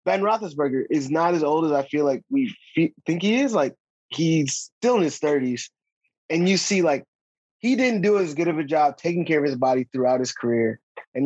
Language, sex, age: English, male, 20-39